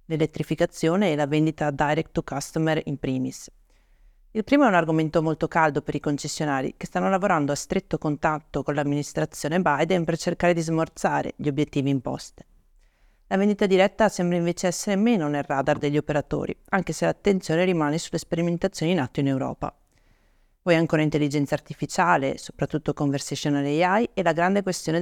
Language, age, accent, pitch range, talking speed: Italian, 40-59, native, 150-190 Hz, 160 wpm